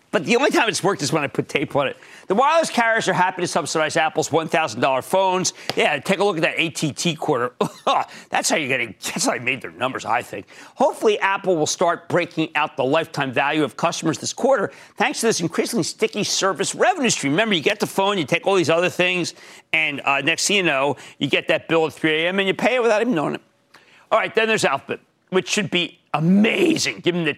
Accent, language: American, English